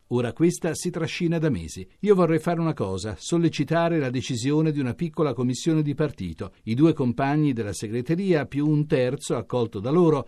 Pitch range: 115-160 Hz